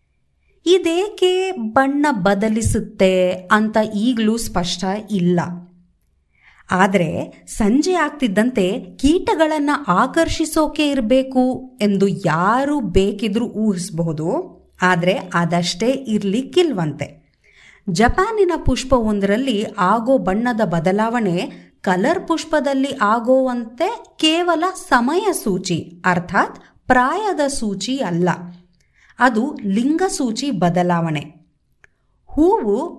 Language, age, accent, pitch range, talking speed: Kannada, 30-49, native, 185-285 Hz, 70 wpm